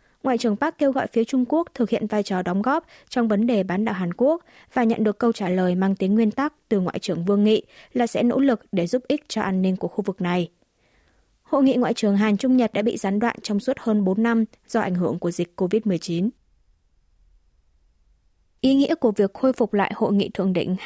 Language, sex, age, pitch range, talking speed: Vietnamese, female, 20-39, 190-240 Hz, 240 wpm